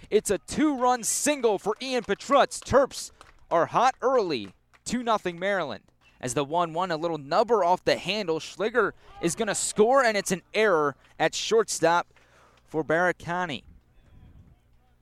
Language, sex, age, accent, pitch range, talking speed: English, male, 20-39, American, 160-225 Hz, 140 wpm